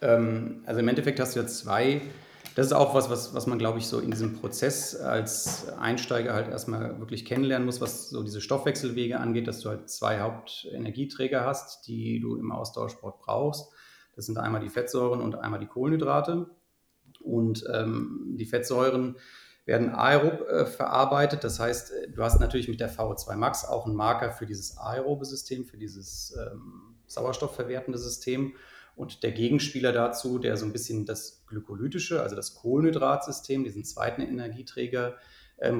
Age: 30-49